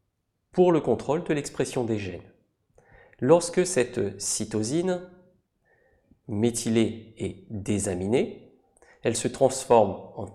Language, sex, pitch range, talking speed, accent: French, male, 110-140 Hz, 100 wpm, French